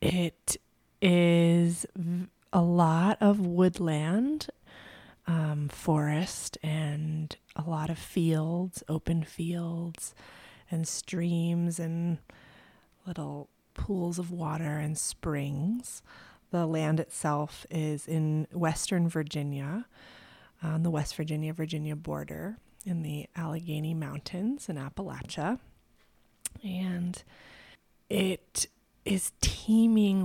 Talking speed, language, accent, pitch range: 95 wpm, English, American, 140-170 Hz